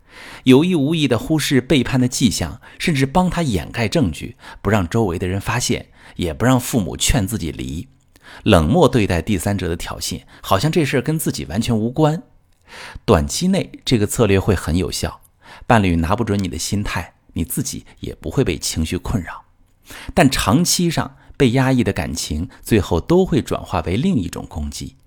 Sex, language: male, Chinese